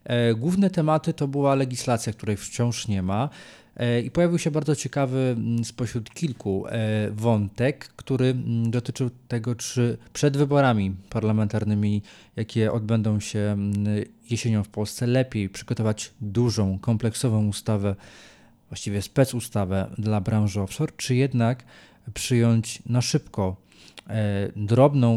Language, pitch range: Polish, 105-125 Hz